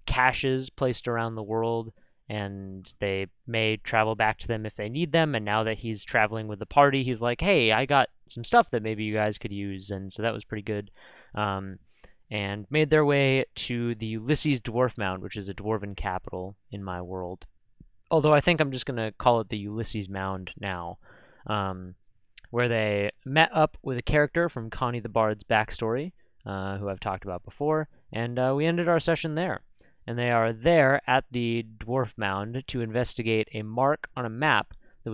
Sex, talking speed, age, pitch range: male, 195 wpm, 20-39, 100-135 Hz